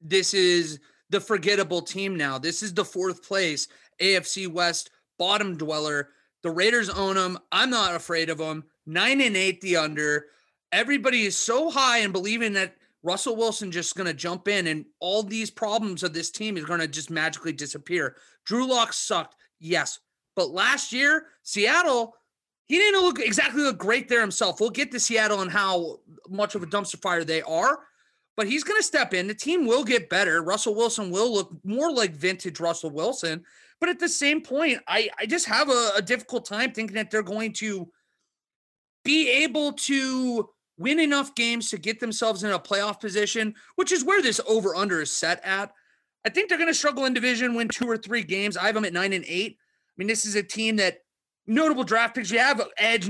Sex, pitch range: male, 180-245 Hz